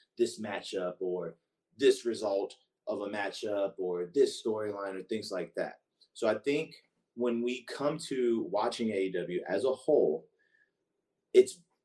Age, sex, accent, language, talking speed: 30-49, male, American, English, 140 wpm